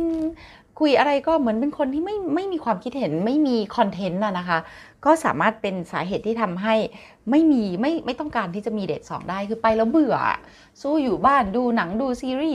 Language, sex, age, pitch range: Thai, female, 30-49, 195-260 Hz